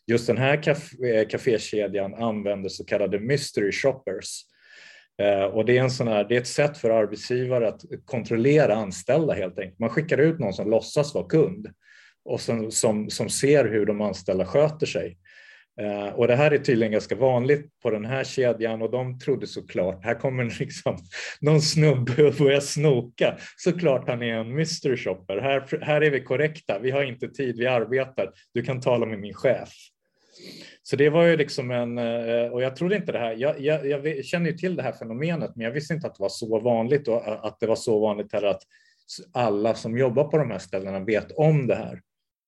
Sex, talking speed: male, 200 wpm